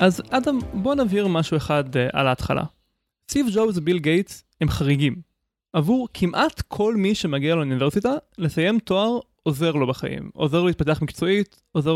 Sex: male